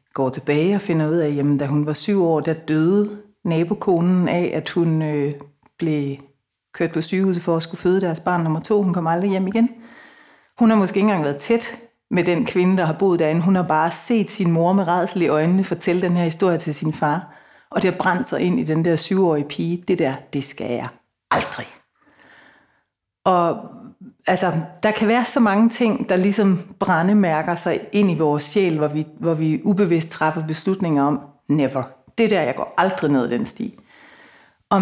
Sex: female